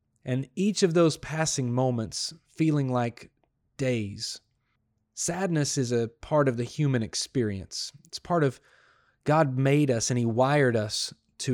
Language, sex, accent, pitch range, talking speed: English, male, American, 110-140 Hz, 145 wpm